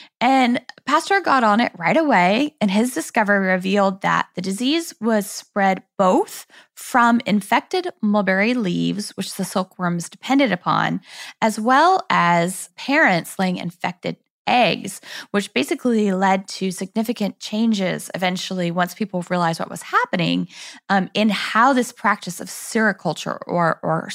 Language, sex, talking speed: English, female, 135 wpm